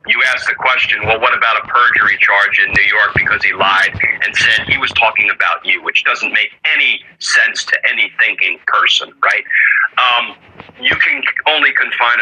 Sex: male